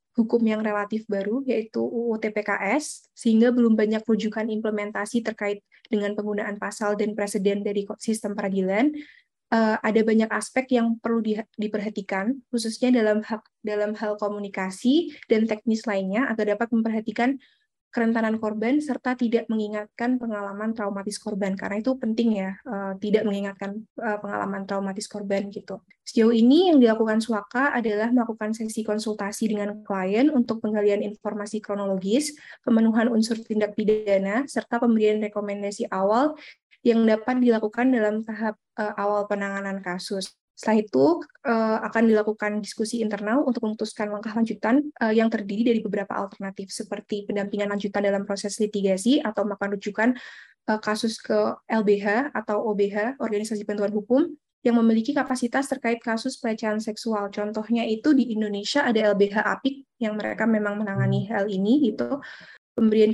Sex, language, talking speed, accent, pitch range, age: female, Indonesian, 140 wpm, native, 205-230 Hz, 20-39